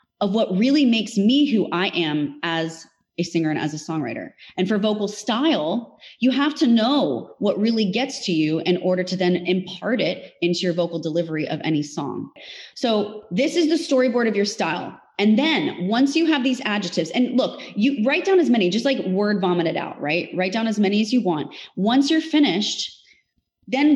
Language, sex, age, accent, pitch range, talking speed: English, female, 20-39, American, 175-255 Hz, 205 wpm